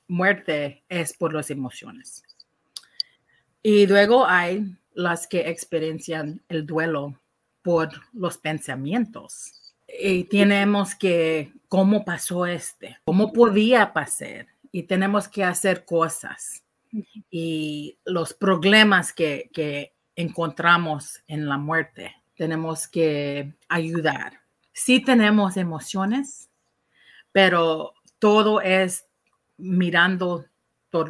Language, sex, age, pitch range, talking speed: English, female, 40-59, 155-195 Hz, 95 wpm